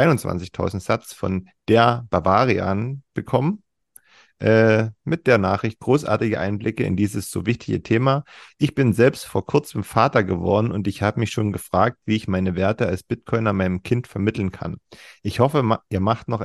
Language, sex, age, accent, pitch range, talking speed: German, male, 40-59, German, 100-125 Hz, 160 wpm